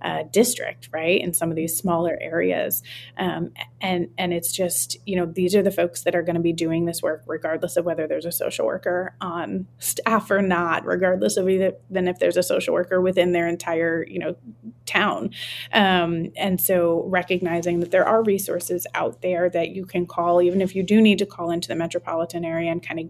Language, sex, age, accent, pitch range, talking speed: English, female, 30-49, American, 165-185 Hz, 215 wpm